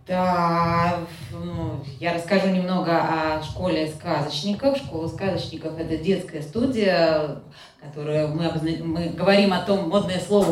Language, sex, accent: Russian, female, native